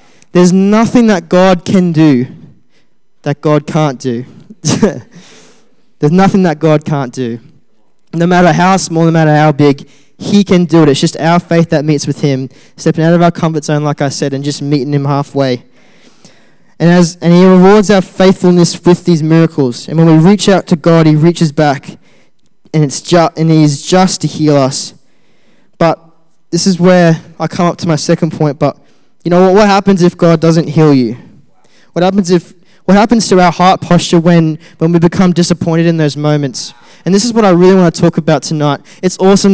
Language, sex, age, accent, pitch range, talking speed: English, male, 10-29, Australian, 155-185 Hz, 195 wpm